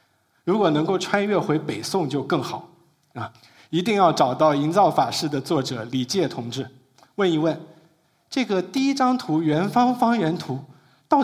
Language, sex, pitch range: Chinese, male, 140-190 Hz